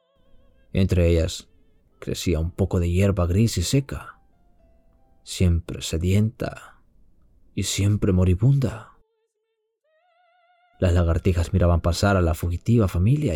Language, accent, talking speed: Spanish, Spanish, 105 wpm